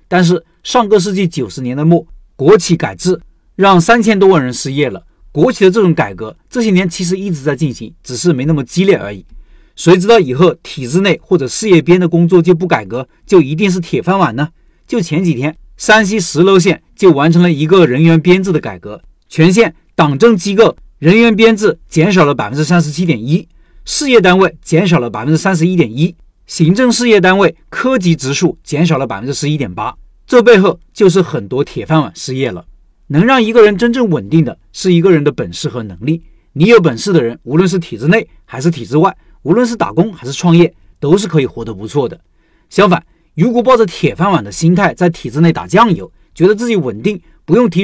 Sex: male